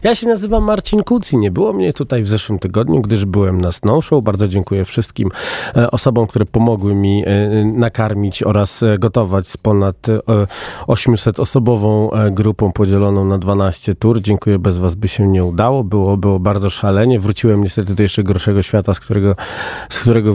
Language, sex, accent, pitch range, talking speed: Polish, male, native, 95-110 Hz, 160 wpm